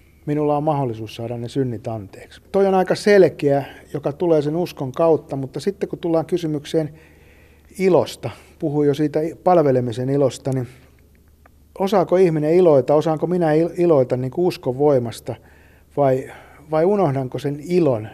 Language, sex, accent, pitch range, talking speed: Finnish, male, native, 125-155 Hz, 140 wpm